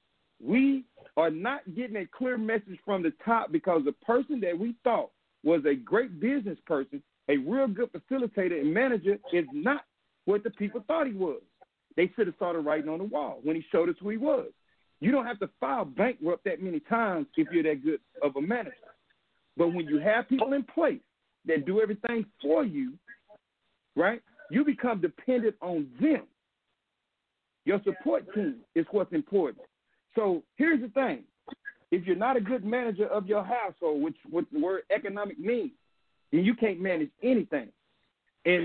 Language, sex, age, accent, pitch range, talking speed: English, male, 50-69, American, 175-260 Hz, 180 wpm